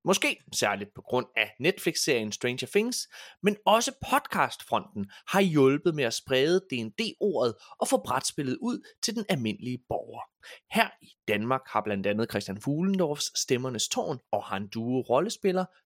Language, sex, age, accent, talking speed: Danish, male, 30-49, native, 150 wpm